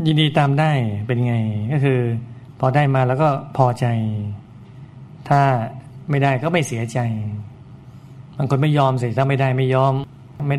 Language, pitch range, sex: Thai, 125-140 Hz, male